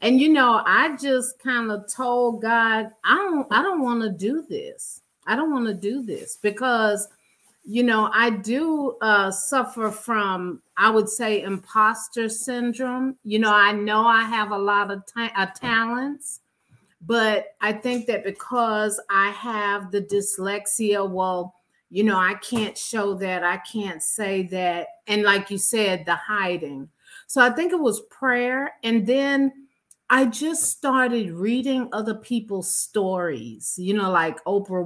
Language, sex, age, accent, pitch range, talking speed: English, female, 40-59, American, 185-240 Hz, 160 wpm